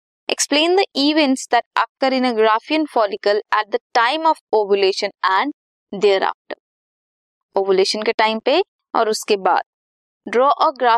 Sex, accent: female, native